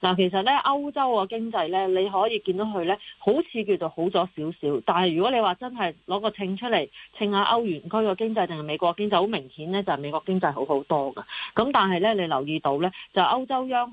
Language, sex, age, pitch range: Chinese, female, 40-59, 160-210 Hz